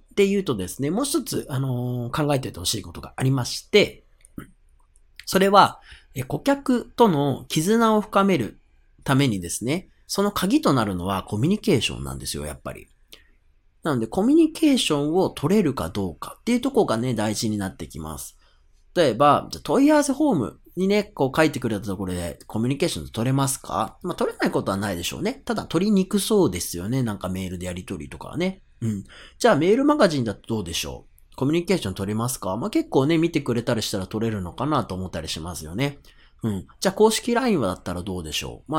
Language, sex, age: Japanese, male, 40-59